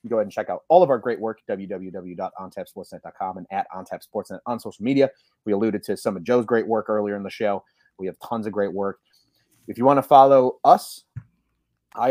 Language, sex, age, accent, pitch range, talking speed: English, male, 30-49, American, 100-130 Hz, 215 wpm